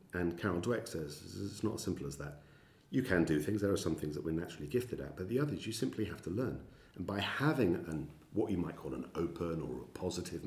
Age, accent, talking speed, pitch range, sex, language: 40-59, British, 250 wpm, 80-115 Hz, male, English